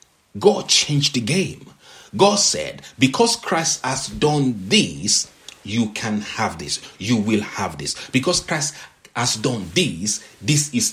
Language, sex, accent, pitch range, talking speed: English, male, Nigerian, 110-165 Hz, 145 wpm